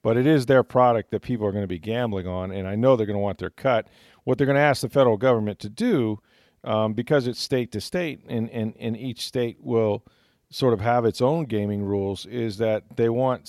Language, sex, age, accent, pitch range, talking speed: English, male, 40-59, American, 100-120 Hz, 245 wpm